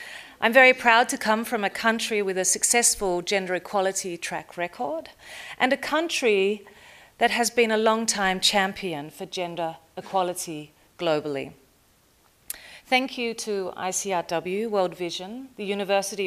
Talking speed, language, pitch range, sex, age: 135 wpm, English, 180-225 Hz, female, 40-59